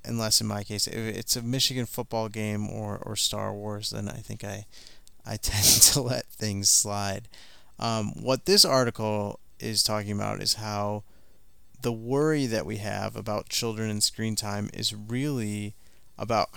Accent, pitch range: American, 105-125 Hz